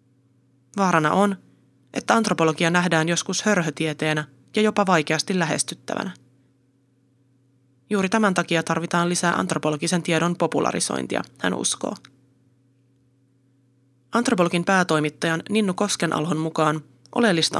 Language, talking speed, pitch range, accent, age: Finnish, 90 wpm, 135-180 Hz, native, 30-49